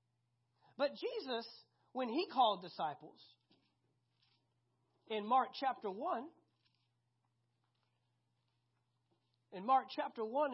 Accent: American